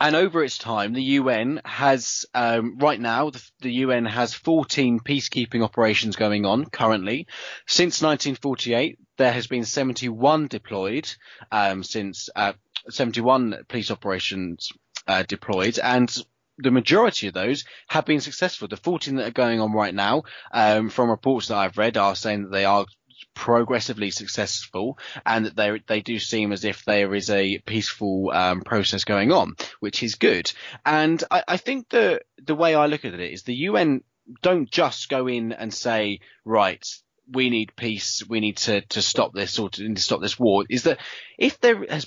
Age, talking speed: 20-39, 175 wpm